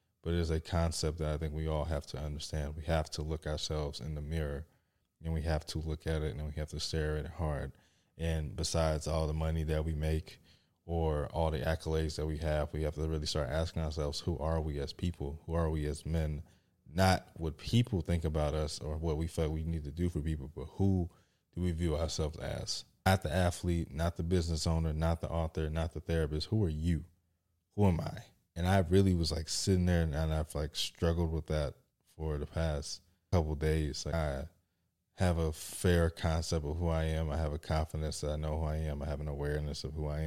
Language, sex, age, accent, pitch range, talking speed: English, male, 20-39, American, 75-85 Hz, 235 wpm